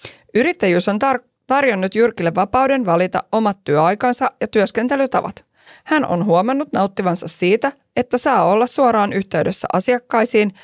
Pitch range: 175-235 Hz